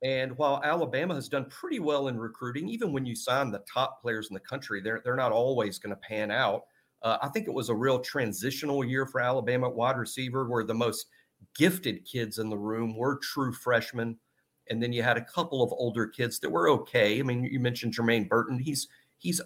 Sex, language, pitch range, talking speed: male, English, 115-140 Hz, 220 wpm